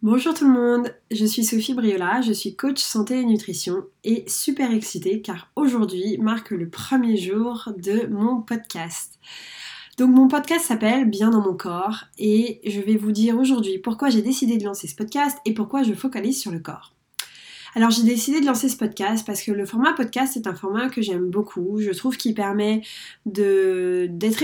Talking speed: 190 wpm